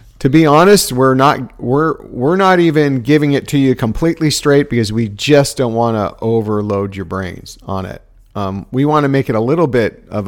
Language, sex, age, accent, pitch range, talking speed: English, male, 50-69, American, 105-135 Hz, 210 wpm